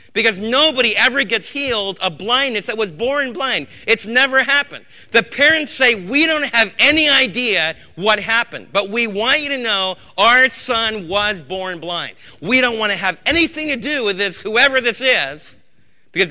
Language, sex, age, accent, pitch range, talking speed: English, male, 40-59, American, 205-265 Hz, 180 wpm